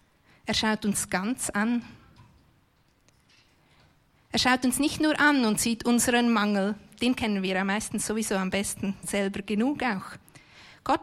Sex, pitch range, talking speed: female, 210-250 Hz, 150 wpm